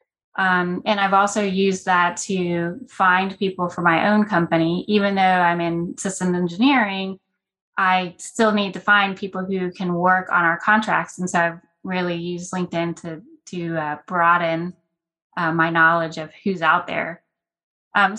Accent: American